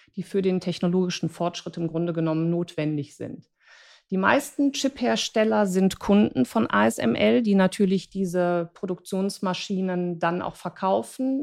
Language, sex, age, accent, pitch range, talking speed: German, female, 50-69, German, 185-230 Hz, 125 wpm